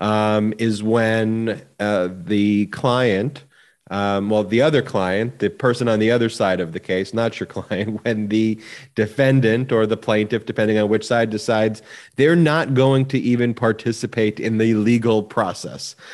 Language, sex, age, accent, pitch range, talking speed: English, male, 30-49, American, 105-120 Hz, 165 wpm